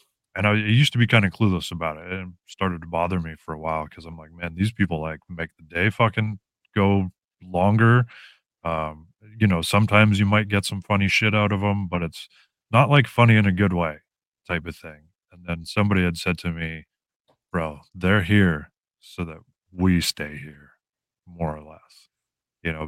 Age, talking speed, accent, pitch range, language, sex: 30-49, 200 wpm, American, 85-105 Hz, English, male